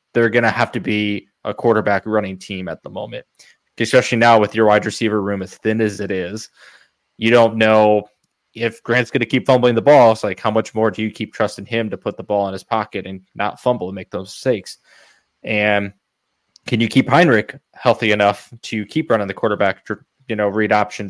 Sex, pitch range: male, 105-120 Hz